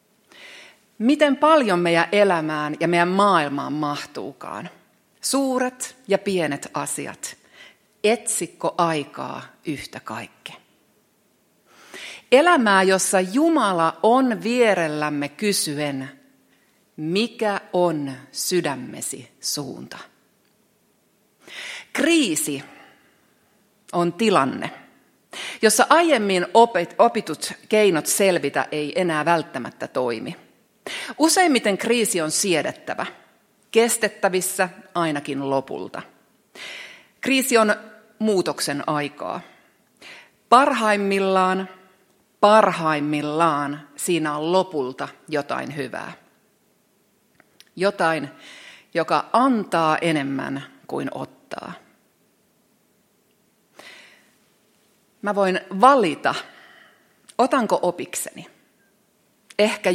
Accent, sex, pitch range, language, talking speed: native, female, 170-220 Hz, Finnish, 70 wpm